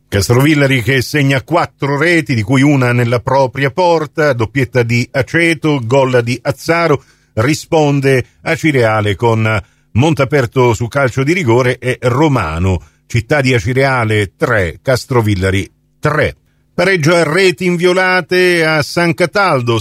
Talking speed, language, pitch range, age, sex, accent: 120 wpm, Italian, 115-155 Hz, 50-69, male, native